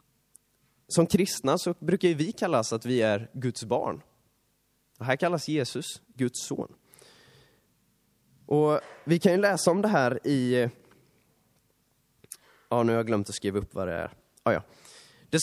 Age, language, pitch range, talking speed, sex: 20-39, Swedish, 120-165 Hz, 155 wpm, male